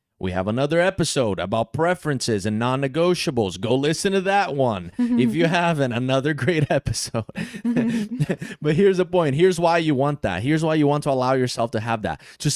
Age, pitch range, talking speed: 20-39, 125-160 Hz, 185 wpm